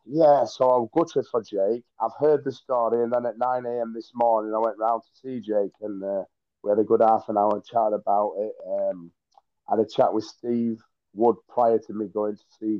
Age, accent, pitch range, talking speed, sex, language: 30-49, British, 110-130 Hz, 230 wpm, male, English